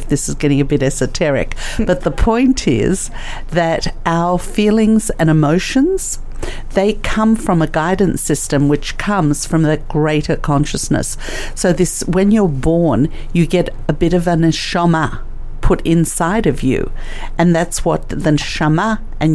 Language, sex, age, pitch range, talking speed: English, female, 50-69, 140-170 Hz, 150 wpm